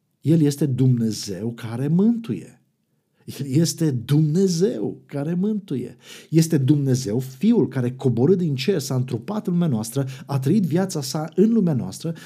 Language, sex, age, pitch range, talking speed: Romanian, male, 50-69, 120-165 Hz, 135 wpm